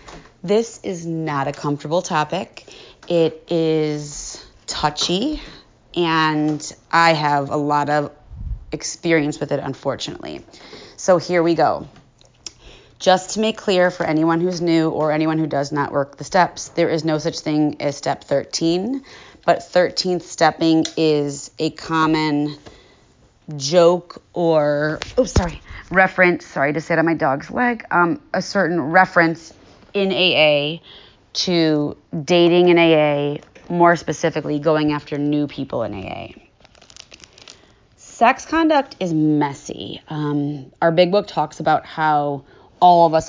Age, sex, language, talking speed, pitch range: 30-49, female, English, 135 wpm, 150-170 Hz